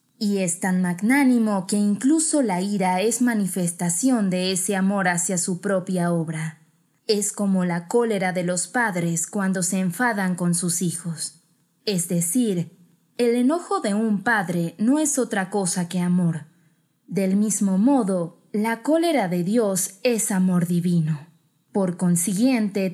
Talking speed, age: 145 wpm, 20-39